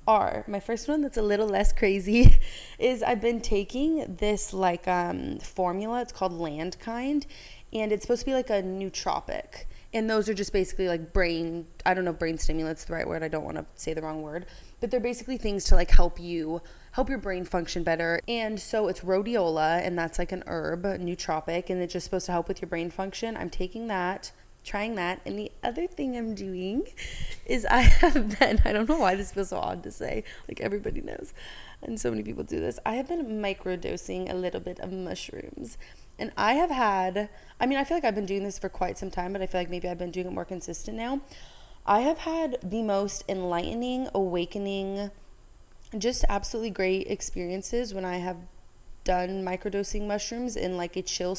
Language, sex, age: English, female, 20-39